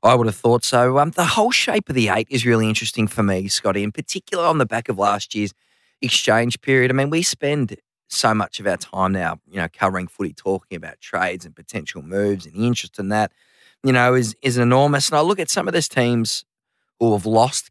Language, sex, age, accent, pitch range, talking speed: English, male, 20-39, Australian, 105-135 Hz, 235 wpm